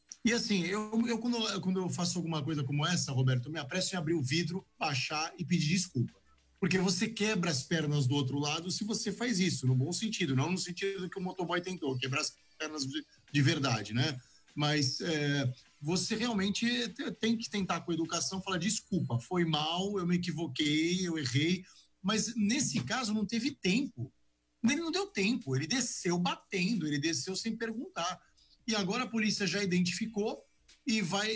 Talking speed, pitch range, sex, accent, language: 185 wpm, 150-205 Hz, male, Brazilian, Portuguese